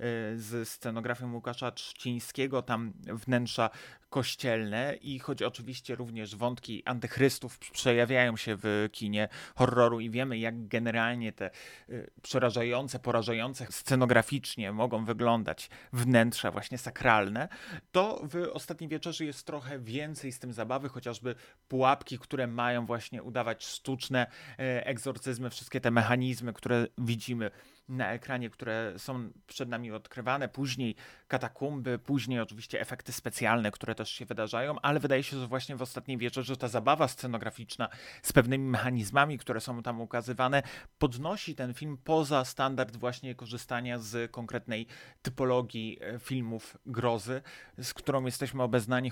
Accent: native